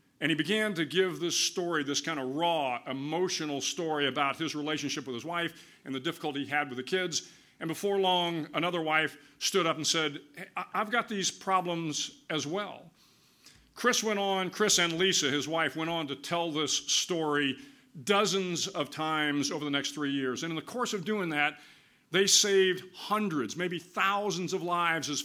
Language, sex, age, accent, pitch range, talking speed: English, male, 50-69, American, 145-180 Hz, 190 wpm